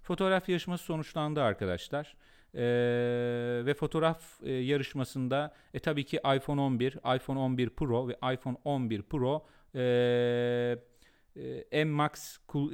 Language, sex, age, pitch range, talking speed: Turkish, male, 40-59, 115-145 Hz, 90 wpm